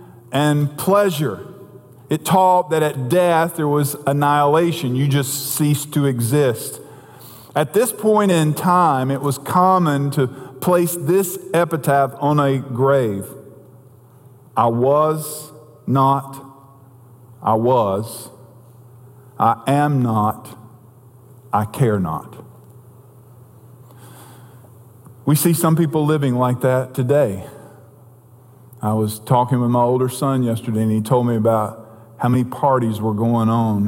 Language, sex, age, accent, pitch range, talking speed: English, male, 50-69, American, 120-145 Hz, 120 wpm